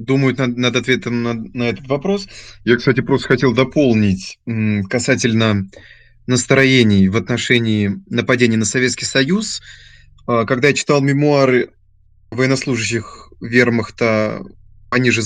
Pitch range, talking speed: 110-135 Hz, 115 wpm